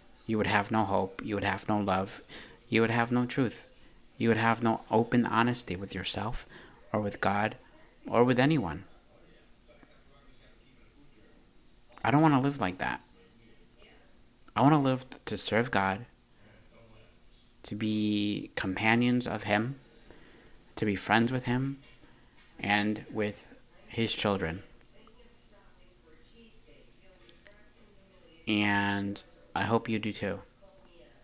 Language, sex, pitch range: English, male, 100-120 Hz